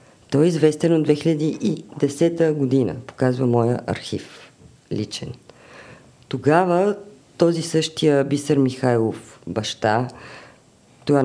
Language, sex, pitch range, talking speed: Bulgarian, female, 130-160 Hz, 90 wpm